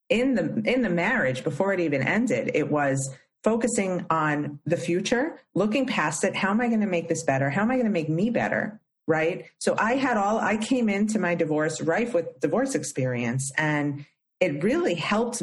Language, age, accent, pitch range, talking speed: English, 40-59, American, 140-205 Hz, 200 wpm